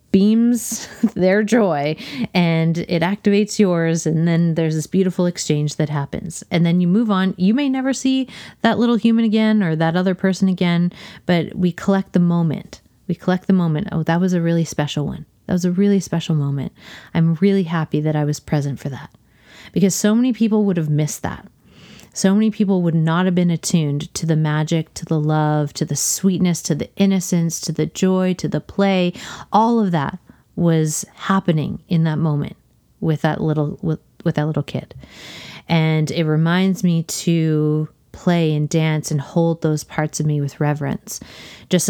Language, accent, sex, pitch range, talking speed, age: English, American, female, 155-190 Hz, 190 wpm, 30-49